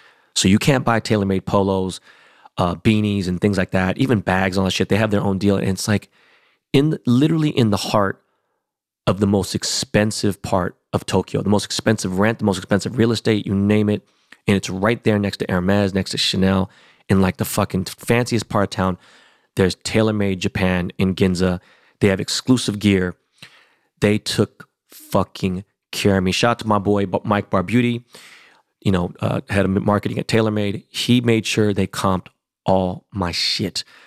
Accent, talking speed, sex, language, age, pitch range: American, 190 wpm, male, English, 30-49, 95-110 Hz